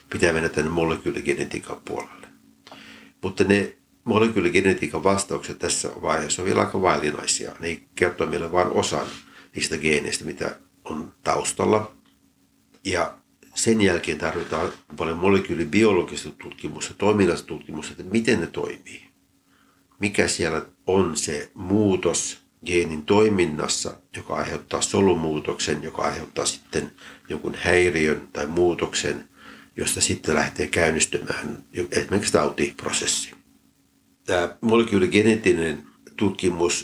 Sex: male